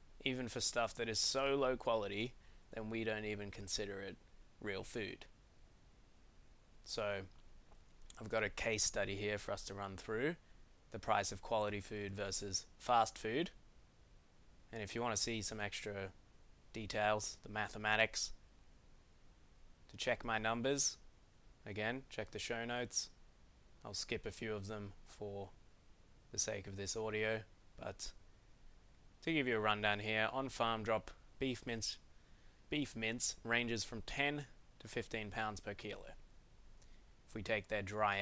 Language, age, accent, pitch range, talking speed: English, 20-39, Australian, 95-115 Hz, 150 wpm